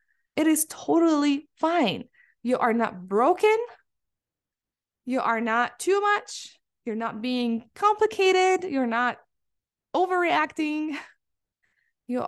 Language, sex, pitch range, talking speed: English, female, 215-280 Hz, 105 wpm